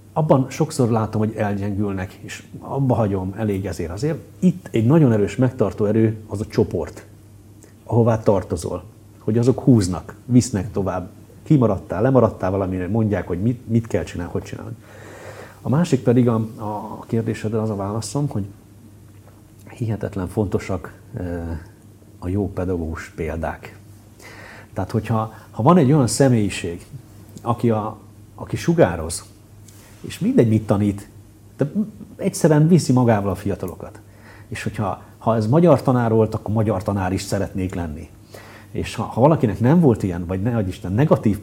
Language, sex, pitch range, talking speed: Hungarian, male, 100-115 Hz, 140 wpm